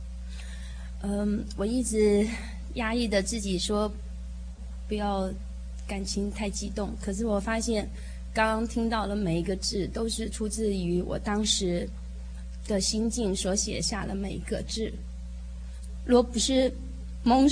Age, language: 20-39, Chinese